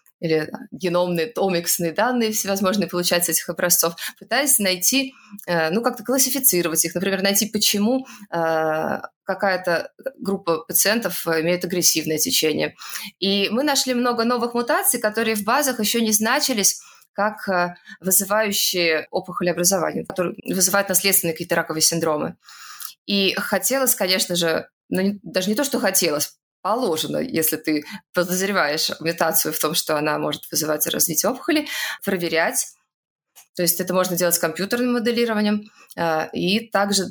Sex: female